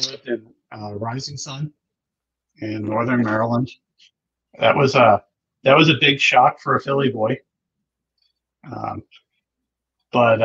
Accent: American